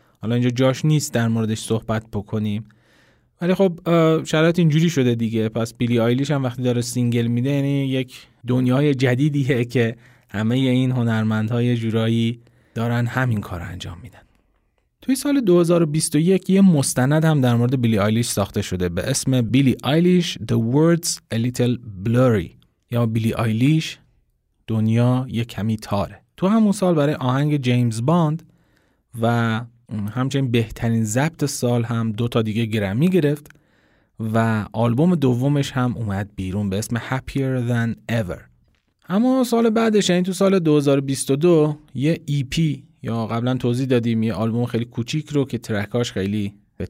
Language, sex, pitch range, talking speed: Persian, male, 110-145 Hz, 150 wpm